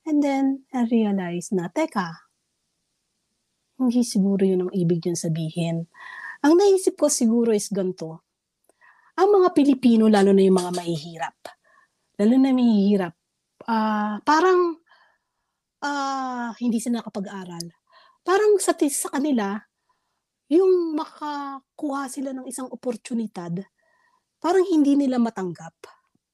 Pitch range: 200-275 Hz